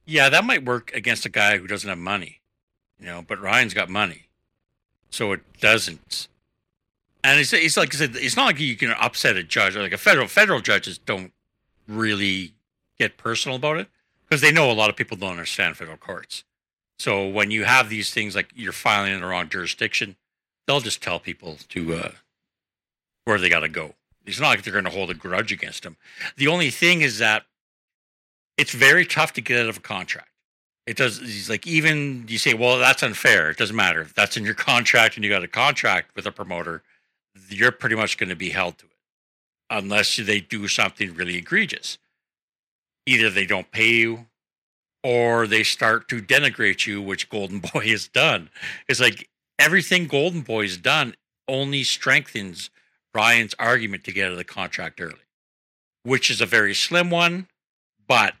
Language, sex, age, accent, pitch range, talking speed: English, male, 60-79, American, 95-125 Hz, 190 wpm